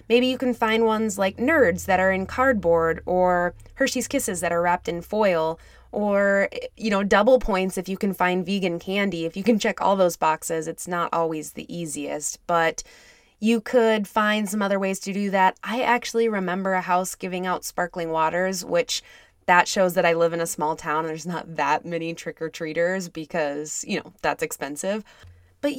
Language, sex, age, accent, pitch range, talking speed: English, female, 20-39, American, 170-225 Hz, 195 wpm